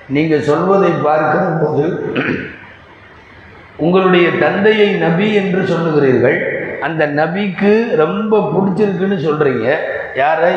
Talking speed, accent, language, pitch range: 80 wpm, native, Tamil, 155-200 Hz